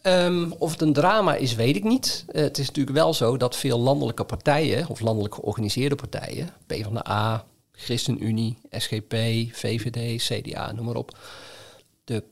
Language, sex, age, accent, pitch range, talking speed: Dutch, male, 40-59, Dutch, 115-140 Hz, 150 wpm